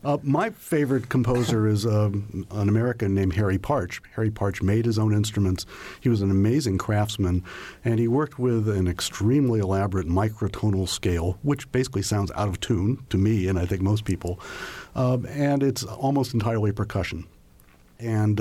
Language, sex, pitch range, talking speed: English, male, 95-115 Hz, 165 wpm